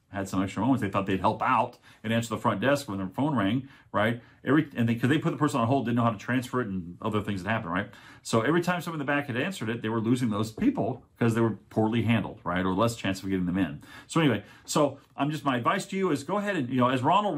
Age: 40-59